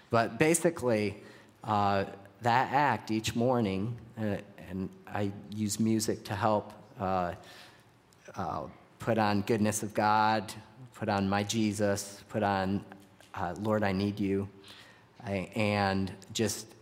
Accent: American